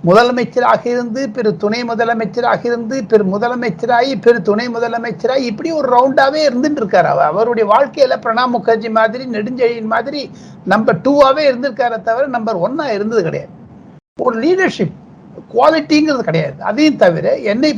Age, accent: 60-79, native